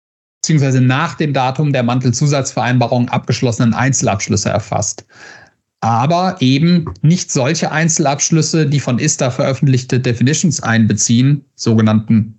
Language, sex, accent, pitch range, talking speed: German, male, German, 125-160 Hz, 100 wpm